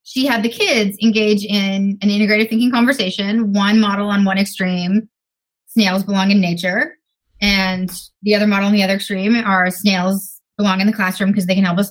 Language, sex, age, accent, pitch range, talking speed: English, female, 20-39, American, 190-225 Hz, 190 wpm